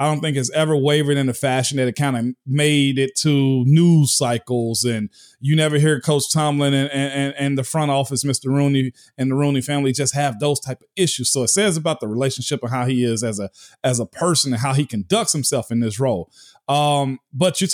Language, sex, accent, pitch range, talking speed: English, male, American, 135-175 Hz, 225 wpm